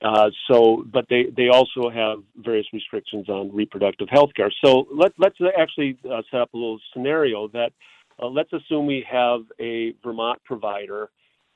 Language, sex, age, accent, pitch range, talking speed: English, male, 50-69, American, 110-130 Hz, 165 wpm